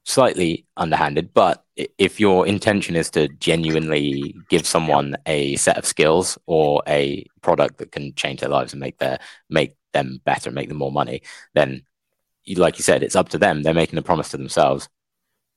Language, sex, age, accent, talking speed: English, male, 20-39, British, 185 wpm